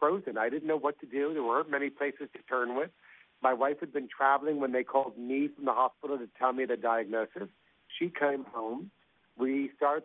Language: English